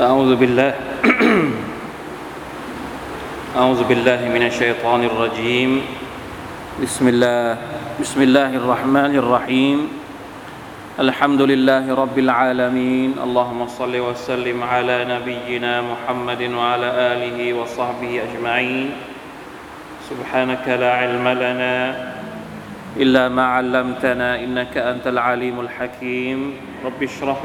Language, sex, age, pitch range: Thai, male, 20-39, 125-135 Hz